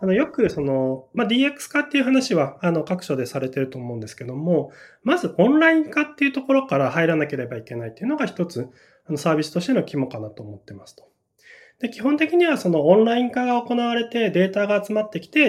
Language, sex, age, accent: Japanese, male, 20-39, native